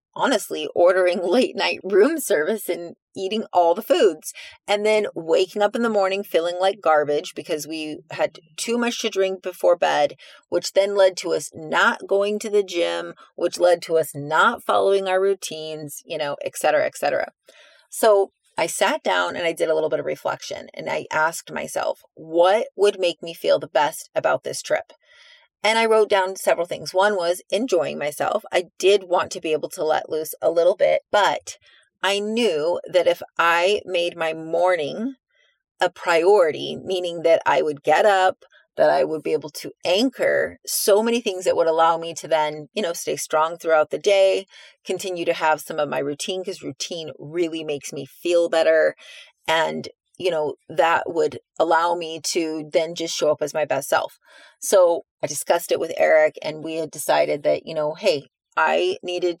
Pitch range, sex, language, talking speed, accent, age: 155-200 Hz, female, English, 190 wpm, American, 30-49